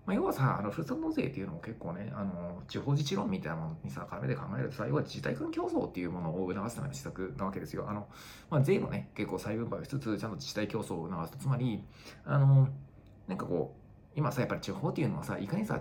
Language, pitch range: Japanese, 100-135 Hz